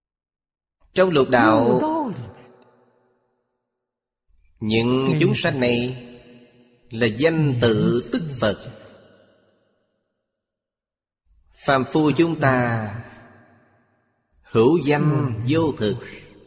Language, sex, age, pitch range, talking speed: Vietnamese, male, 20-39, 105-140 Hz, 75 wpm